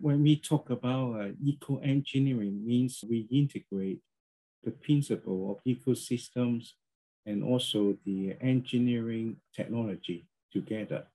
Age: 50-69